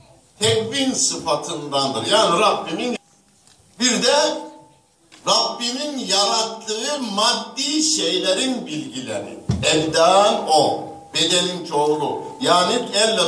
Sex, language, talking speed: male, Turkish, 75 wpm